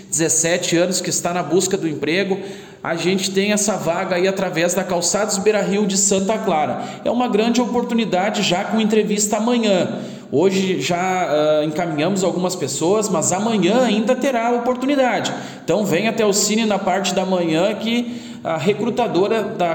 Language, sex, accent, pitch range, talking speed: Portuguese, male, Brazilian, 185-225 Hz, 165 wpm